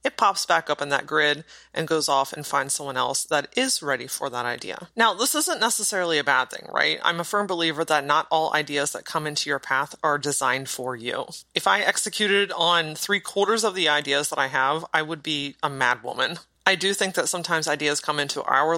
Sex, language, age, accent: female, English, 30-49, American